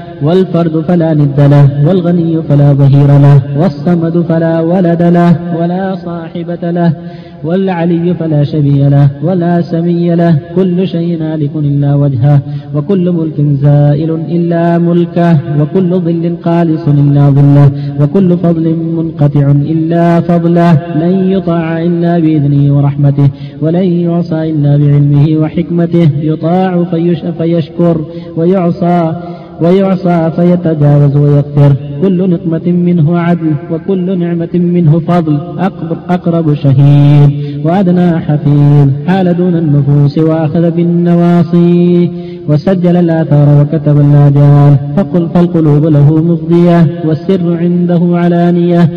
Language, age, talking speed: Arabic, 30-49, 105 wpm